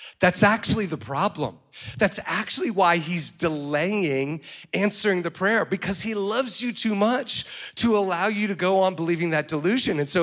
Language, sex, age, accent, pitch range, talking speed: English, male, 40-59, American, 155-205 Hz, 170 wpm